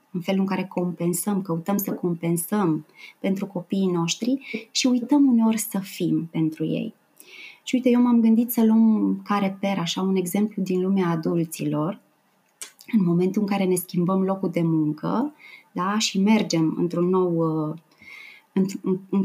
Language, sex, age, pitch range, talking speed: Romanian, female, 20-39, 175-225 Hz, 150 wpm